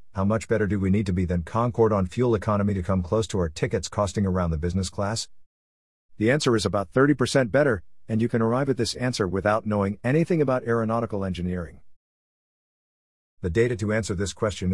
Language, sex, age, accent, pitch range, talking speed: English, male, 50-69, American, 90-120 Hz, 200 wpm